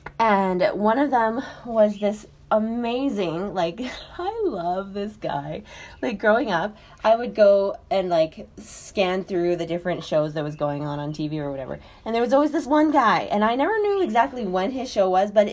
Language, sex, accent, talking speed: English, female, American, 195 wpm